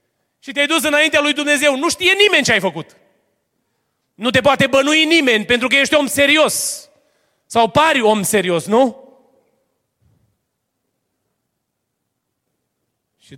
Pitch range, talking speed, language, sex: 135-200 Hz, 125 wpm, Romanian, male